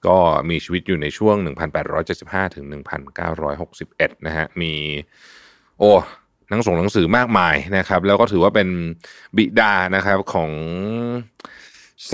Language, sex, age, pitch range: Thai, male, 30-49, 80-110 Hz